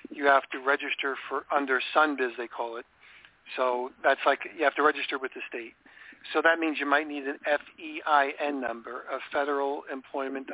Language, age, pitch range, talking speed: English, 50-69, 140-175 Hz, 180 wpm